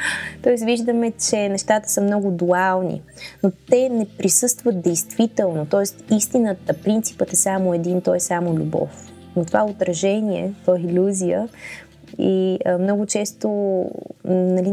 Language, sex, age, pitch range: Bulgarian, female, 20-39, 170-205 Hz